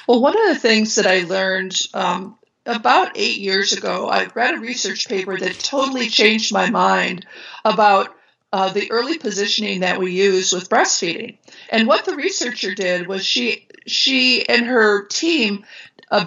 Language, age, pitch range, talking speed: English, 50-69, 195-240 Hz, 165 wpm